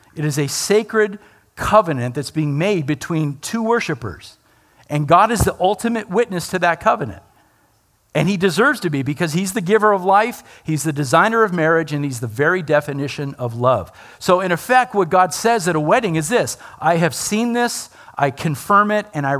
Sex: male